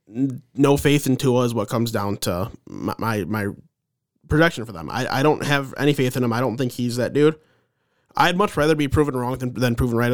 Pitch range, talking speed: 115-135 Hz, 230 wpm